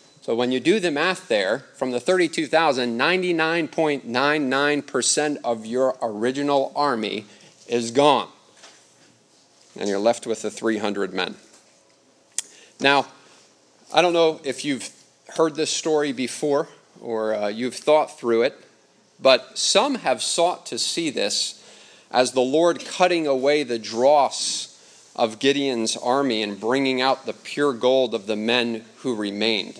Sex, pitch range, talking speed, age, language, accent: male, 115-145 Hz, 135 wpm, 40-59, English, American